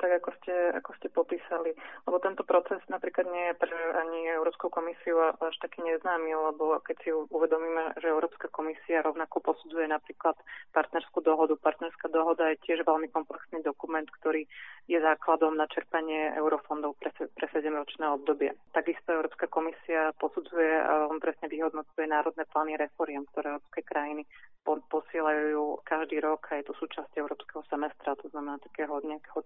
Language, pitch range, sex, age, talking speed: Slovak, 150-165 Hz, female, 30-49, 155 wpm